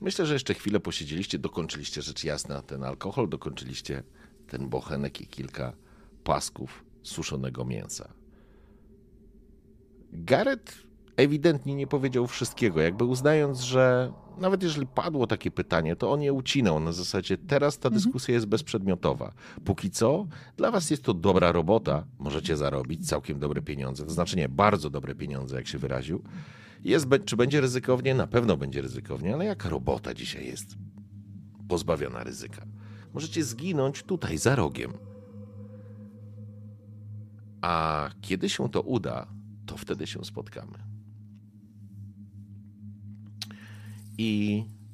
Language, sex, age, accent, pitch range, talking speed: Polish, male, 40-59, native, 95-110 Hz, 125 wpm